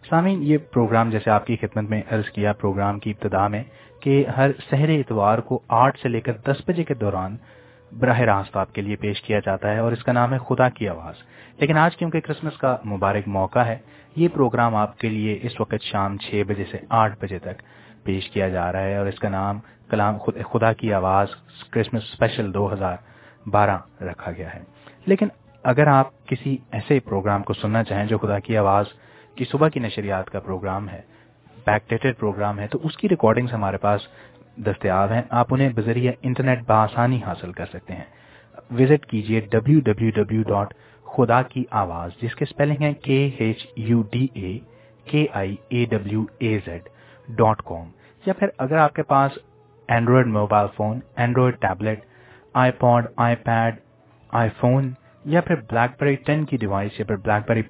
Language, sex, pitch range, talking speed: English, male, 105-130 Hz, 155 wpm